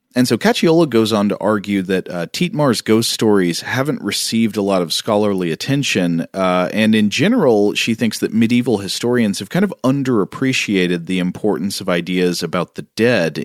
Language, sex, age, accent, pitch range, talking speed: English, male, 40-59, American, 90-115 Hz, 175 wpm